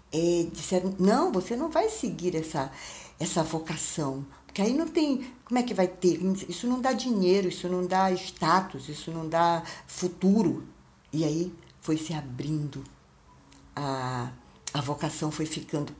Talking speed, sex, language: 155 wpm, female, Portuguese